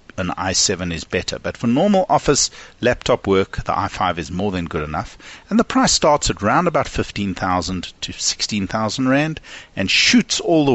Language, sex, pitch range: English, male, 90-120 Hz